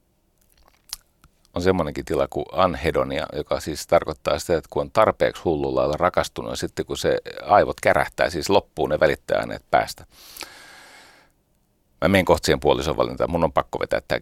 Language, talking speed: Finnish, 150 wpm